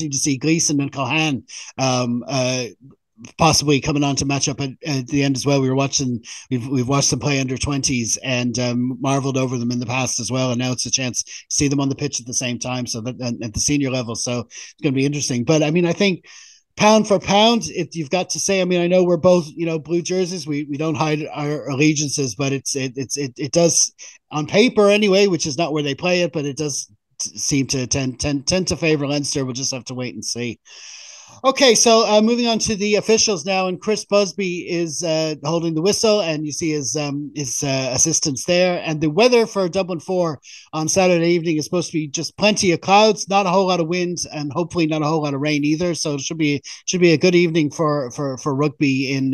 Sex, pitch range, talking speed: male, 135-180 Hz, 245 wpm